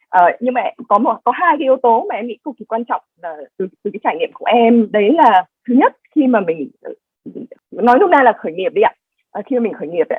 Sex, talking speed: female, 275 wpm